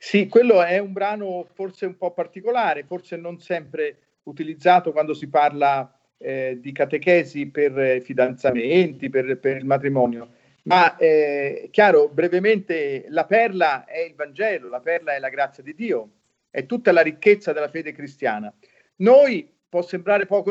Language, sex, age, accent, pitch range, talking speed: Italian, male, 50-69, native, 140-200 Hz, 150 wpm